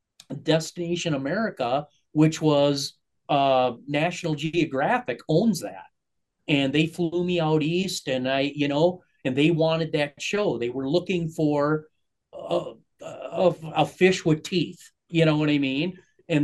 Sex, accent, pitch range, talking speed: male, American, 135-160 Hz, 145 wpm